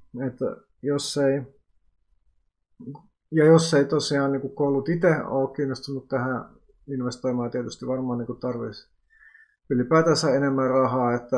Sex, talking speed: male, 120 wpm